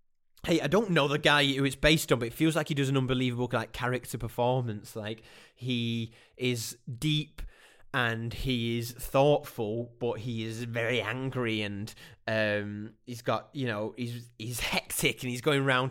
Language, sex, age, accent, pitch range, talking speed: English, male, 20-39, British, 115-140 Hz, 175 wpm